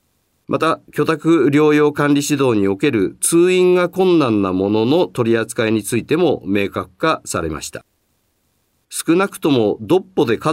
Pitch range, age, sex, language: 100-150 Hz, 40-59, male, Japanese